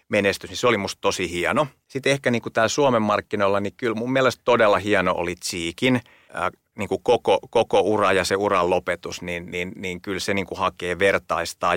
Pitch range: 90-110 Hz